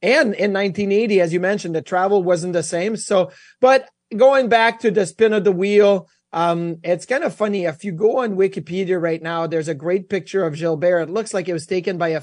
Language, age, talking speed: English, 30-49, 235 wpm